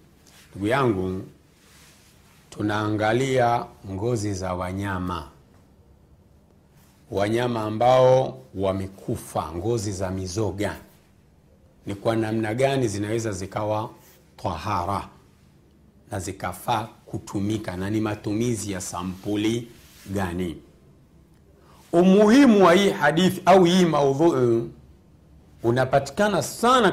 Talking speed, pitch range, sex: 80 wpm, 95-140 Hz, male